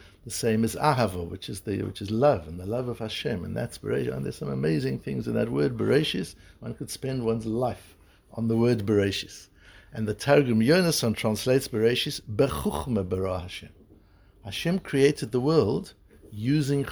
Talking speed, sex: 170 wpm, male